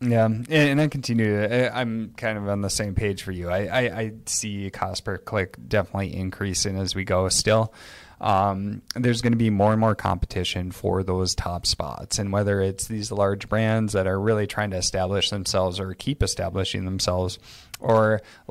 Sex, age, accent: male, 20-39, American